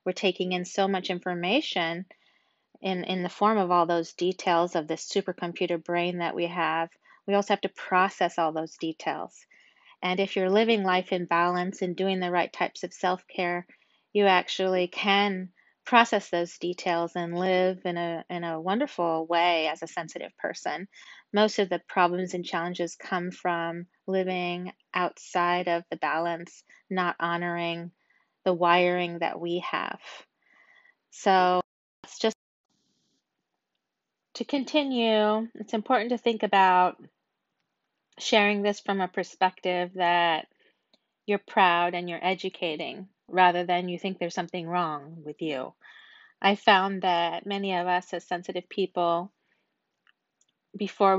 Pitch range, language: 175-200 Hz, English